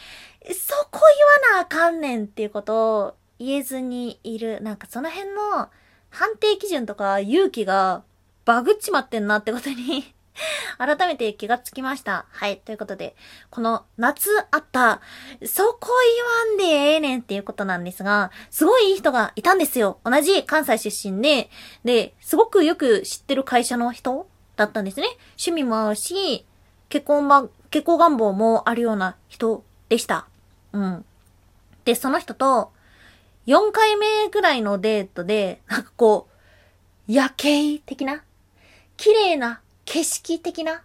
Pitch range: 220-320 Hz